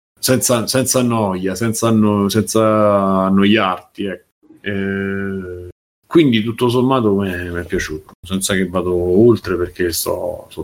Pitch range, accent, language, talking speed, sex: 105-135 Hz, native, Italian, 115 wpm, male